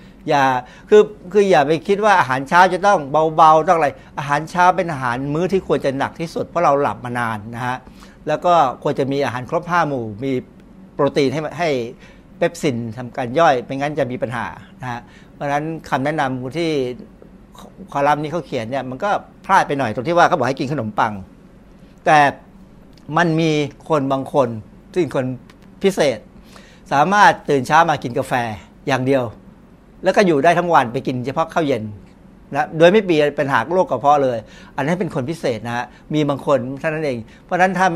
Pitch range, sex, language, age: 130-170 Hz, male, Thai, 60-79